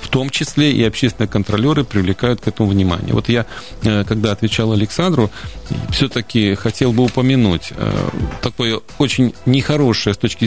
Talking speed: 140 wpm